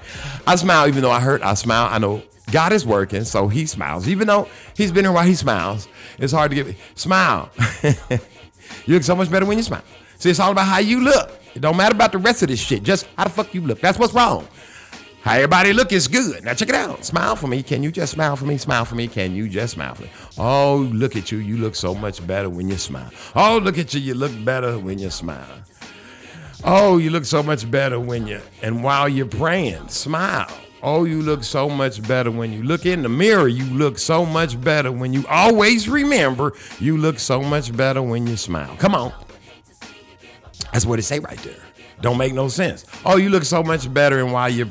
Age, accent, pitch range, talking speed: 50-69, American, 115-180 Hz, 235 wpm